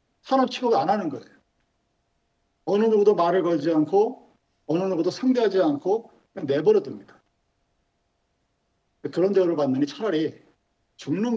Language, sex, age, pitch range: Korean, male, 50-69, 150-230 Hz